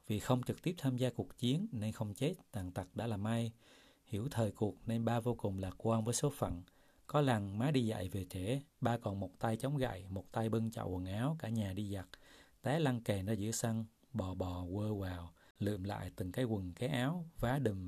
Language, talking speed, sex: Vietnamese, 235 wpm, male